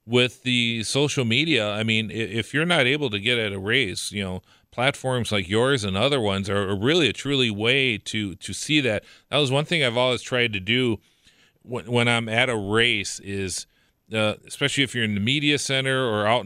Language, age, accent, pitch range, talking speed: English, 40-59, American, 100-125 Hz, 210 wpm